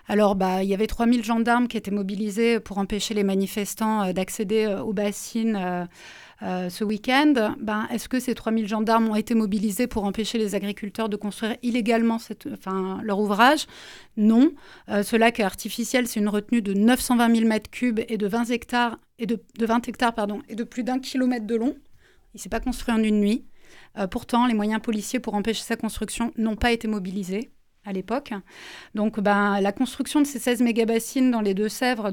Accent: French